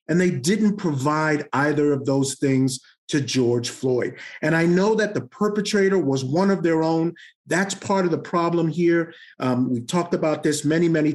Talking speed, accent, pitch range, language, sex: 190 wpm, American, 140-195 Hz, English, male